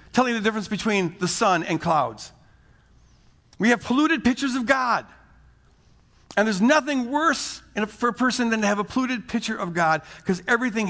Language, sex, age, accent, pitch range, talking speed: English, male, 50-69, American, 160-230 Hz, 180 wpm